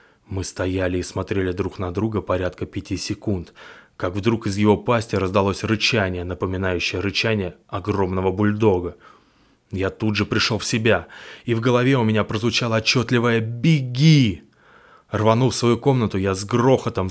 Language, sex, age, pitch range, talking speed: Russian, male, 20-39, 100-125 Hz, 145 wpm